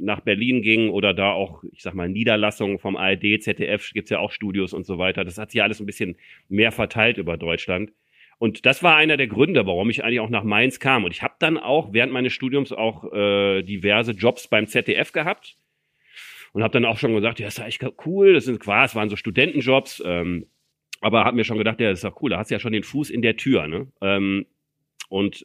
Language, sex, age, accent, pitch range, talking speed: German, male, 40-59, German, 105-135 Hz, 240 wpm